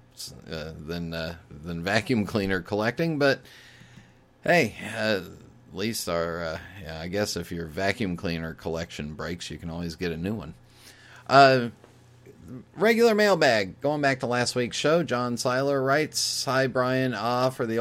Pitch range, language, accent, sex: 90-120 Hz, English, American, male